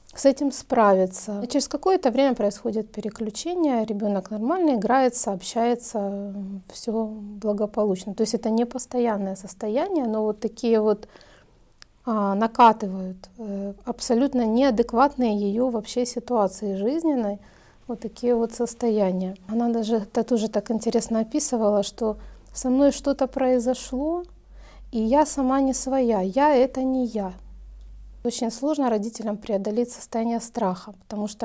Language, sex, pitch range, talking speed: Russian, female, 205-245 Hz, 125 wpm